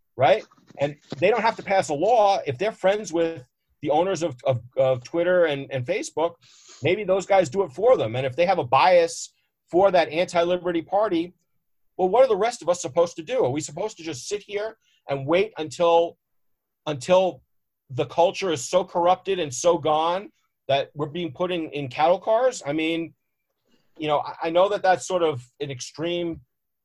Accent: American